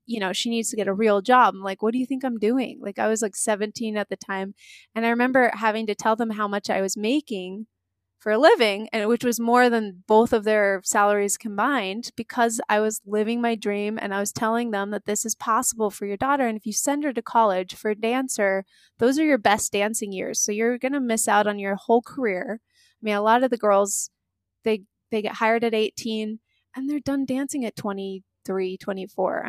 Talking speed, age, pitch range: 230 wpm, 20-39, 205-250 Hz